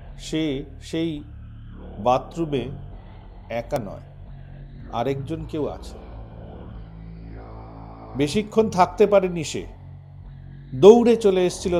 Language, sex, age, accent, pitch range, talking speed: Bengali, male, 50-69, native, 115-175 Hz, 70 wpm